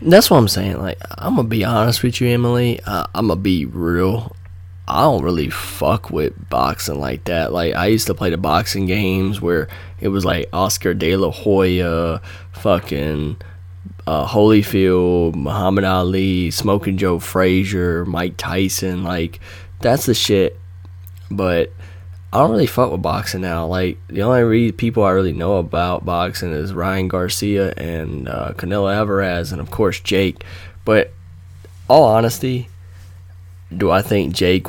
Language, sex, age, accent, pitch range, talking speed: English, male, 10-29, American, 90-100 Hz, 155 wpm